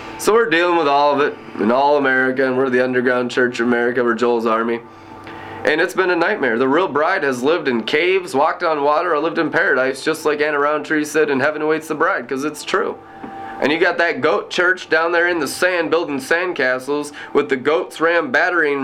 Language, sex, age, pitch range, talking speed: English, male, 20-39, 120-165 Hz, 225 wpm